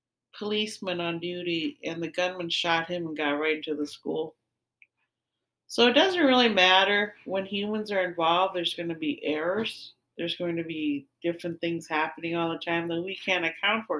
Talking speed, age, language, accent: 185 wpm, 40-59, English, American